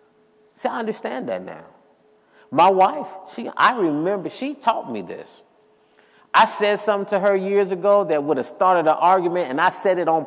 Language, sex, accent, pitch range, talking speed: English, male, American, 155-215 Hz, 185 wpm